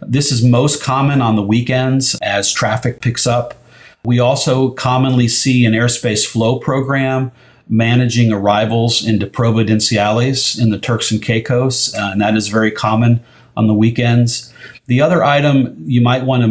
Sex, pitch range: male, 105-125 Hz